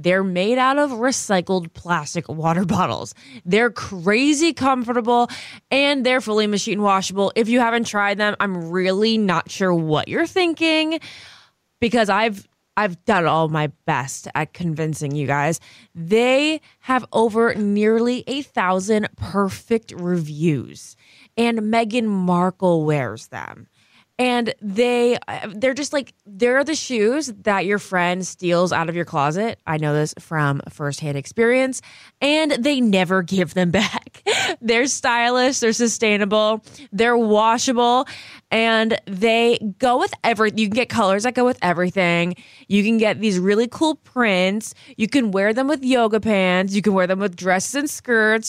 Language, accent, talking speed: English, American, 150 wpm